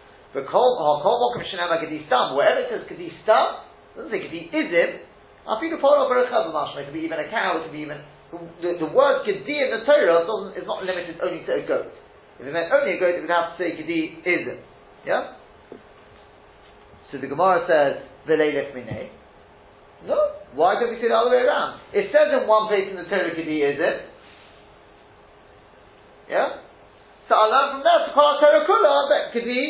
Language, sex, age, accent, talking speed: English, male, 40-59, British, 145 wpm